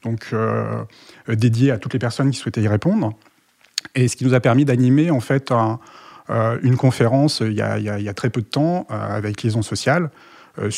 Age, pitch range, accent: 30-49, 110-145 Hz, French